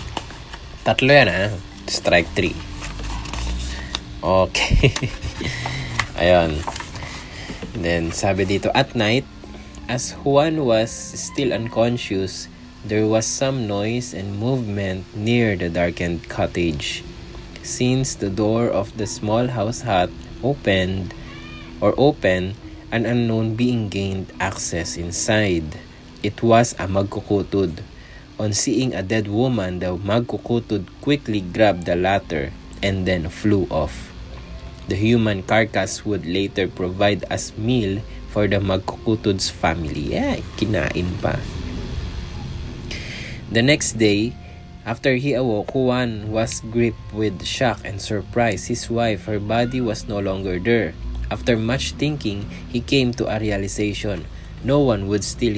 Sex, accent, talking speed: male, Filipino, 120 wpm